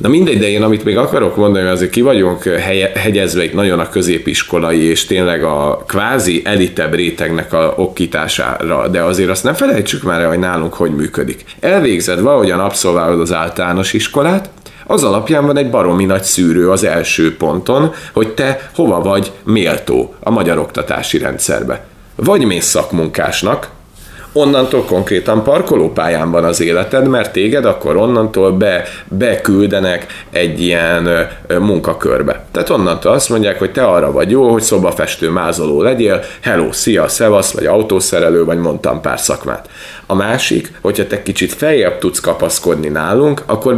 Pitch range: 85-110 Hz